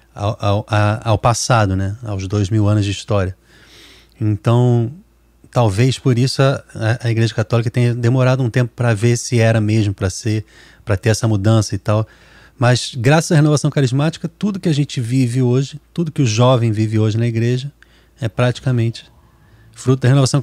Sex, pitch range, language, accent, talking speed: male, 110-140 Hz, Portuguese, Brazilian, 175 wpm